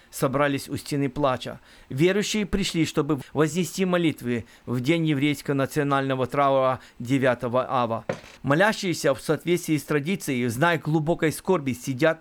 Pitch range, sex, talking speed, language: 135-175 Hz, male, 125 wpm, Russian